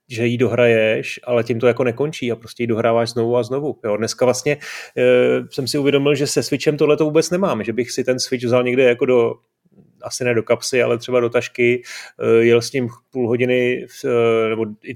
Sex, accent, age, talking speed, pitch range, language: male, native, 30-49, 225 wpm, 120-135 Hz, Czech